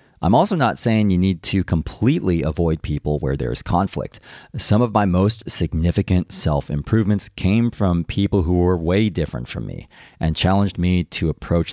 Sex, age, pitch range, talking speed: male, 40-59, 75-105 Hz, 170 wpm